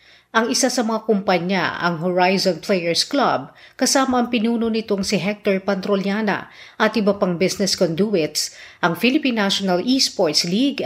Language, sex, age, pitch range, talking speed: Filipino, female, 40-59, 185-240 Hz, 145 wpm